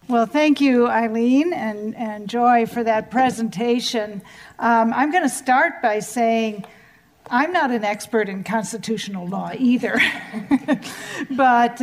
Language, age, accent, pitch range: English, 50-69, American, 215-250 Hz